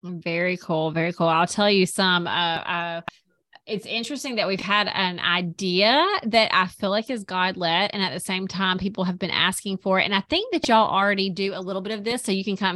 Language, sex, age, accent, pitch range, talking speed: English, female, 30-49, American, 180-215 Hz, 240 wpm